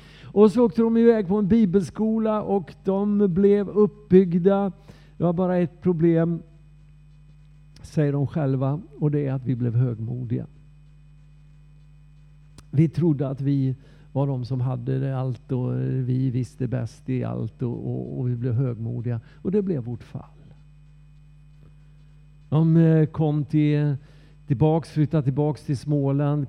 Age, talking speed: 50-69, 140 wpm